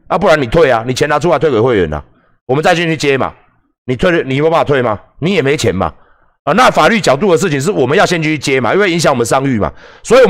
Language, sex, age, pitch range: Chinese, male, 30-49, 115-170 Hz